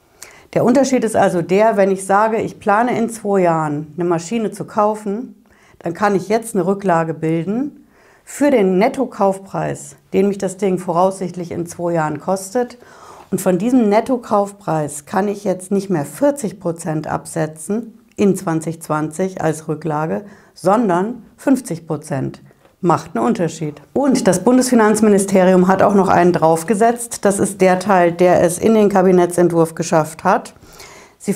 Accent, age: German, 60-79